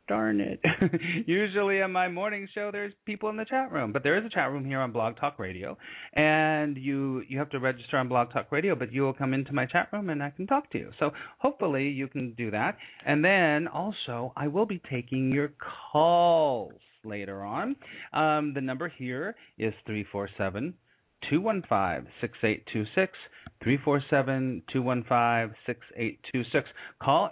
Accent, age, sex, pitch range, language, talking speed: American, 30-49, male, 110-160 Hz, English, 170 wpm